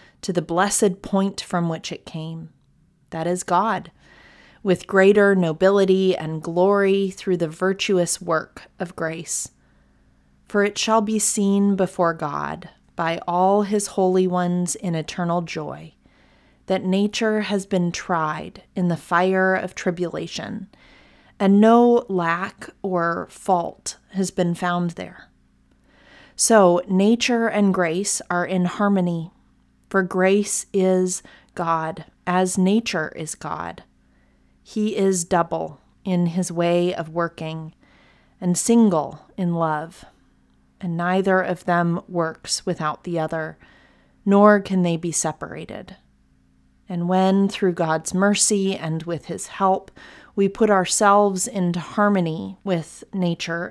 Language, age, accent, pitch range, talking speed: English, 30-49, American, 165-195 Hz, 125 wpm